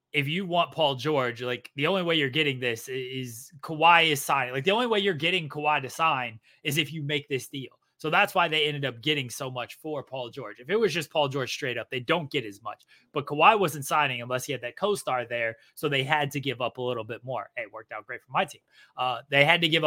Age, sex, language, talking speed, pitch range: 20-39, male, English, 265 wpm, 125-160 Hz